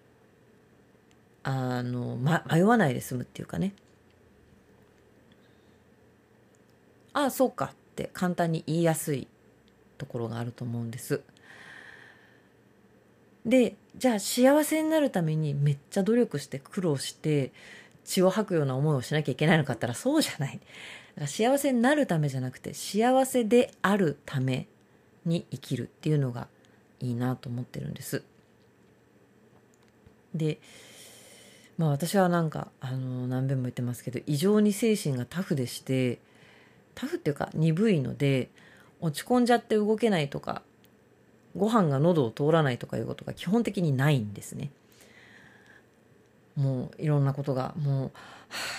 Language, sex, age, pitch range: Japanese, female, 40-59, 130-195 Hz